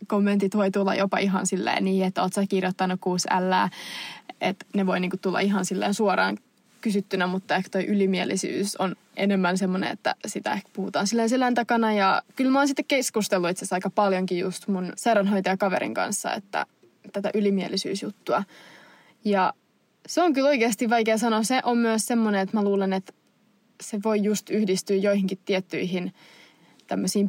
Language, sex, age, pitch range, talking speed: Finnish, female, 20-39, 195-230 Hz, 155 wpm